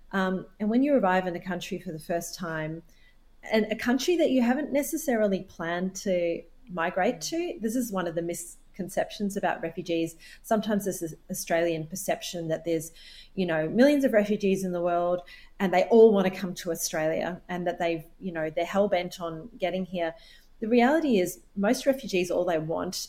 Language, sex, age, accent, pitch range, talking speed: English, female, 30-49, Australian, 170-220 Hz, 185 wpm